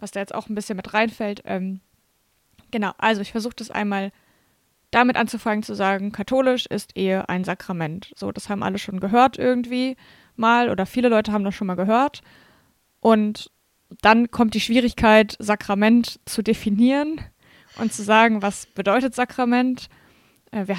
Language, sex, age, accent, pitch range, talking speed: German, female, 20-39, German, 200-230 Hz, 160 wpm